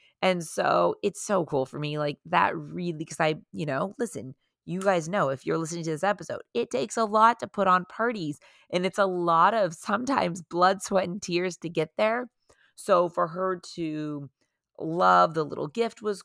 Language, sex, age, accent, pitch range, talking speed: English, female, 30-49, American, 155-205 Hz, 200 wpm